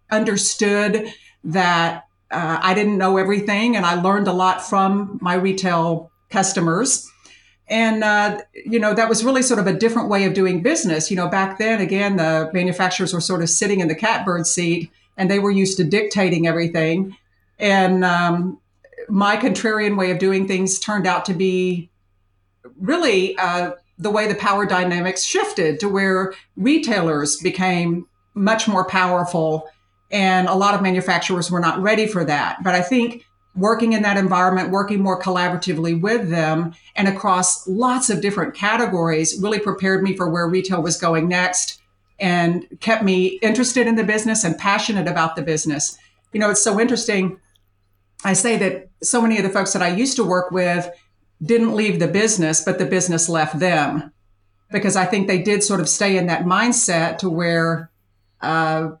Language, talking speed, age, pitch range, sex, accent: English, 175 wpm, 50-69, 170-205 Hz, female, American